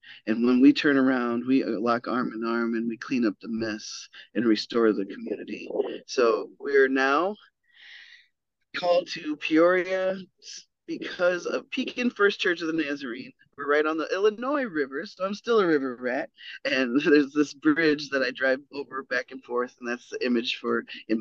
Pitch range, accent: 120-175 Hz, American